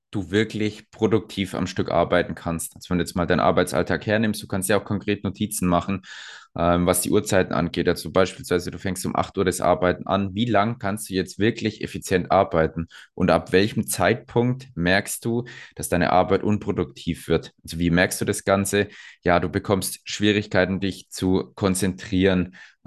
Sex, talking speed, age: male, 180 wpm, 20-39